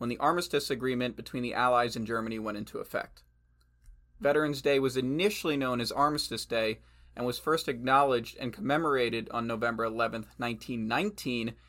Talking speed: 155 wpm